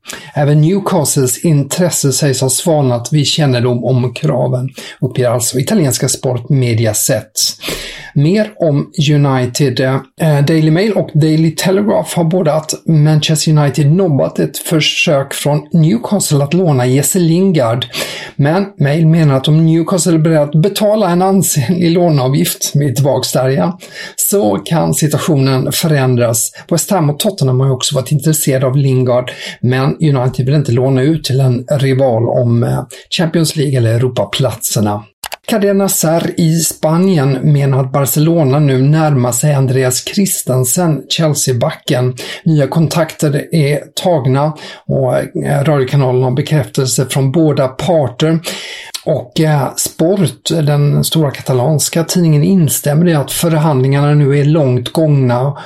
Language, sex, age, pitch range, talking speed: English, male, 50-69, 130-160 Hz, 125 wpm